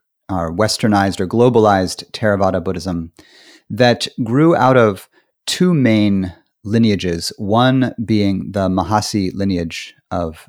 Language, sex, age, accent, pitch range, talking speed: English, male, 30-49, American, 90-115 Hz, 110 wpm